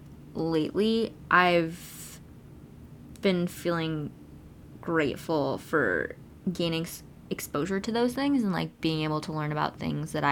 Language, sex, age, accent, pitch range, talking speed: English, female, 20-39, American, 155-185 Hz, 115 wpm